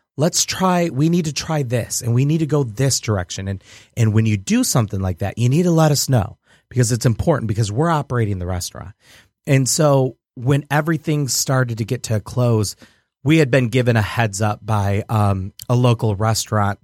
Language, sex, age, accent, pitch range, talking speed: English, male, 30-49, American, 105-135 Hz, 210 wpm